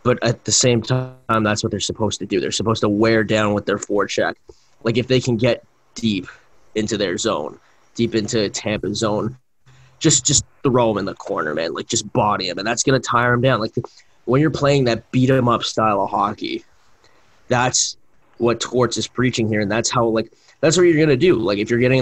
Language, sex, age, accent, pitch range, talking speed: English, male, 20-39, American, 110-125 Hz, 220 wpm